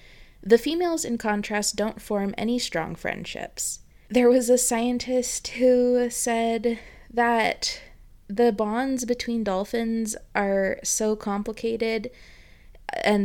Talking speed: 110 wpm